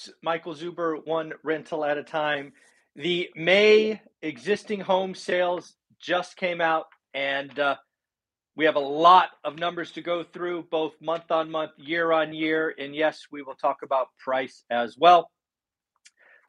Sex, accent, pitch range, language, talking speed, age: male, American, 150-195 Hz, English, 155 wpm, 40-59